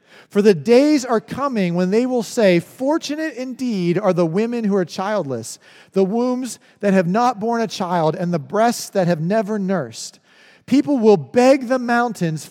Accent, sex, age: American, male, 40-59